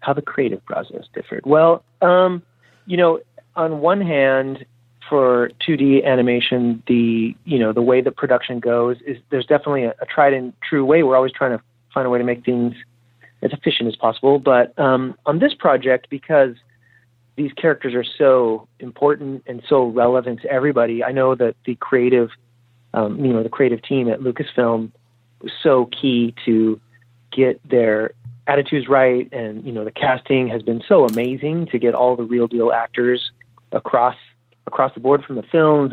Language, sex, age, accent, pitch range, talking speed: English, male, 30-49, American, 120-135 Hz, 175 wpm